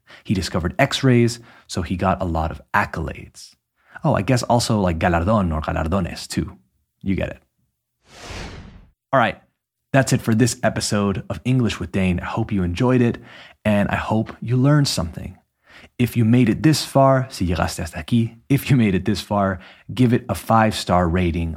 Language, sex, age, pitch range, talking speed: Spanish, male, 30-49, 90-115 Hz, 180 wpm